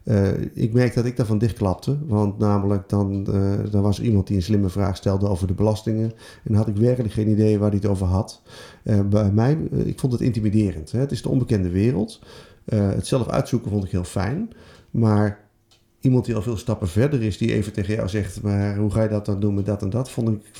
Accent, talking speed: Dutch, 240 wpm